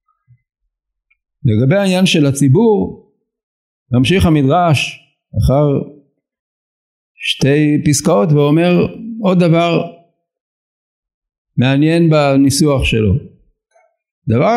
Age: 60-79